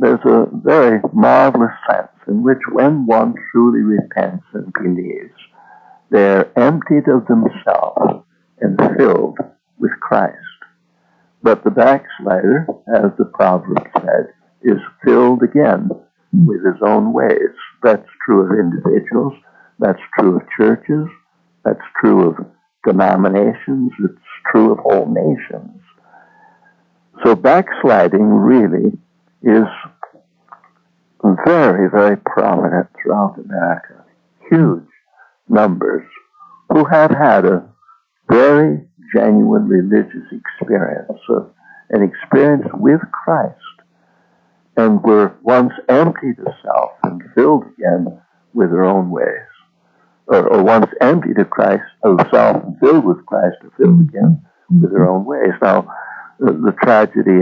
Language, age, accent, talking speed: English, 60-79, American, 115 wpm